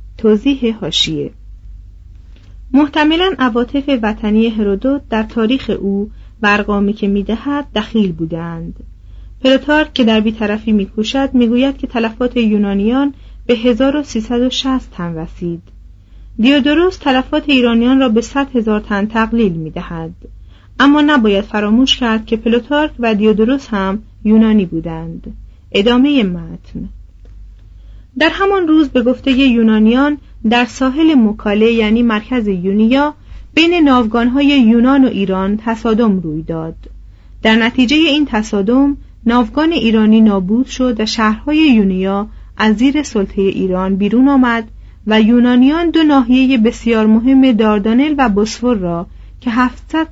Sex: female